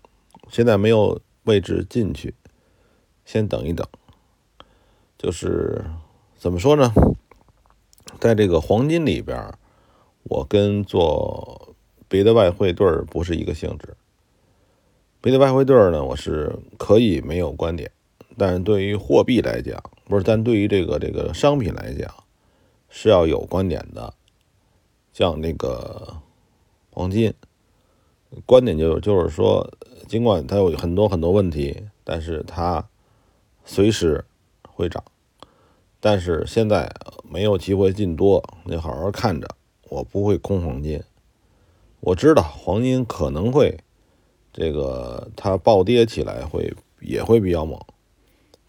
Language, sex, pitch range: Chinese, male, 85-110 Hz